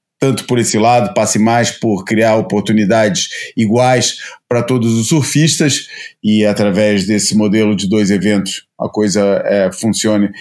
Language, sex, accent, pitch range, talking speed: Portuguese, male, Brazilian, 105-140 Hz, 140 wpm